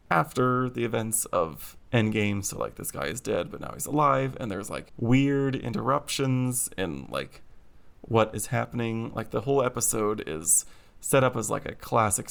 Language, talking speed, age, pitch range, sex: English, 175 wpm, 30-49, 105-130 Hz, male